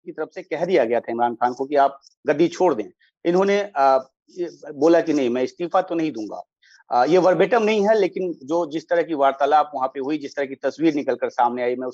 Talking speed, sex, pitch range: 145 wpm, male, 130-170 Hz